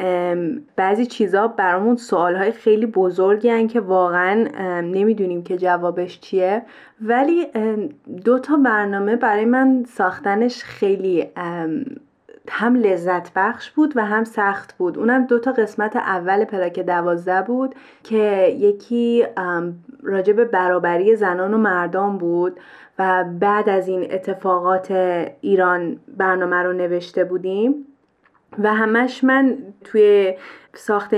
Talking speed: 110 wpm